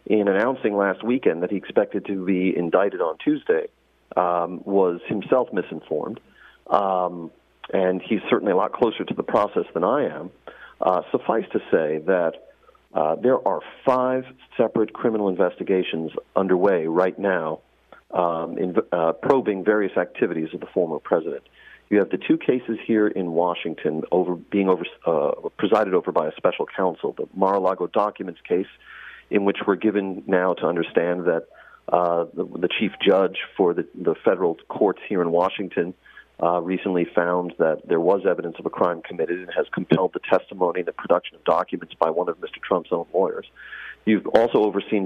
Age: 40-59